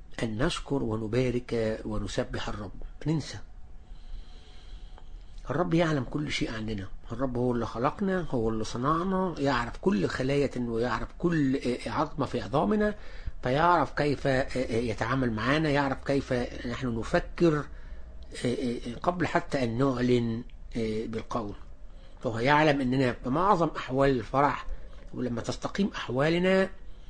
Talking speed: 105 wpm